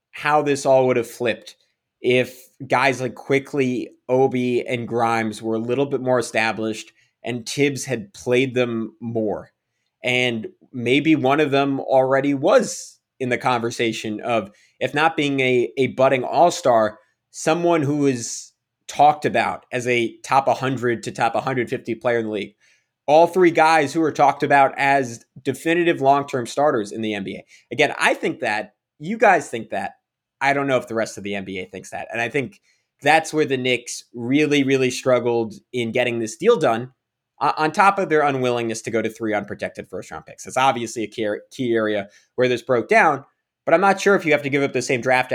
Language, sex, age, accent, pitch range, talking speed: English, male, 20-39, American, 115-140 Hz, 185 wpm